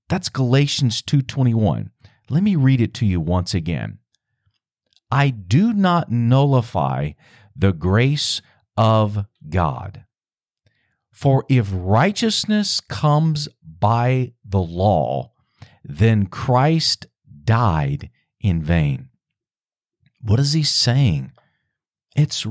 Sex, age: male, 50-69